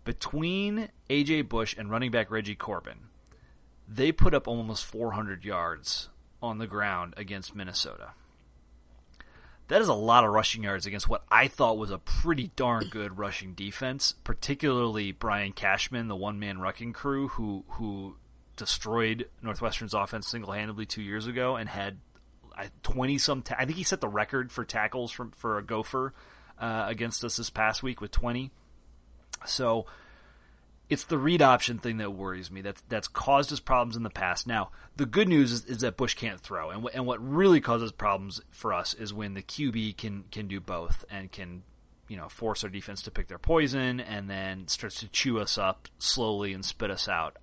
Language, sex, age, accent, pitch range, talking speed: English, male, 30-49, American, 95-125 Hz, 185 wpm